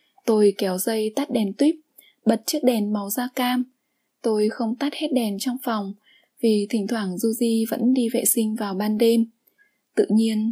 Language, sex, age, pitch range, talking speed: Vietnamese, female, 20-39, 210-260 Hz, 190 wpm